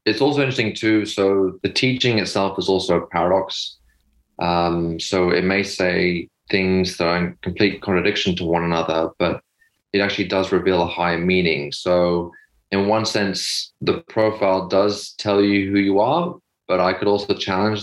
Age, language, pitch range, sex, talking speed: 30-49, English, 85-100 Hz, male, 170 wpm